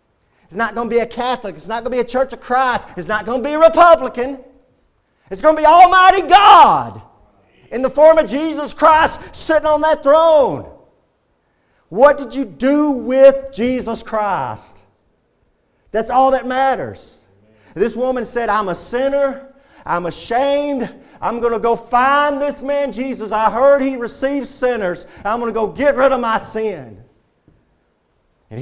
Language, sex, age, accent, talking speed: English, male, 40-59, American, 170 wpm